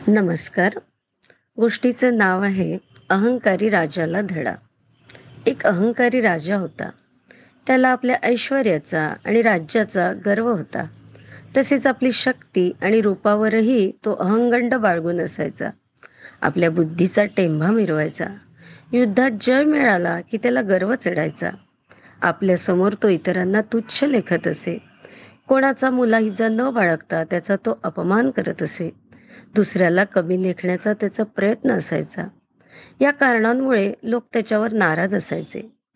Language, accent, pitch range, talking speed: Marathi, native, 175-240 Hz, 110 wpm